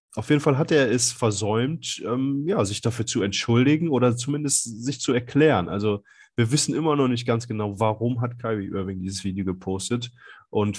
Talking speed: 190 wpm